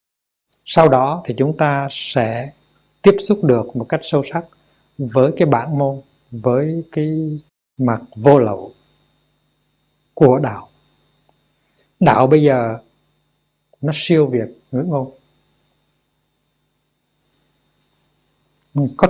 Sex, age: male, 60-79